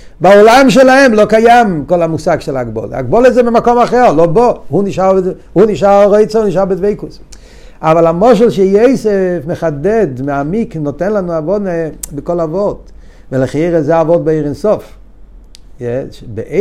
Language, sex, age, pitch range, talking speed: Hebrew, male, 50-69, 170-215 Hz, 140 wpm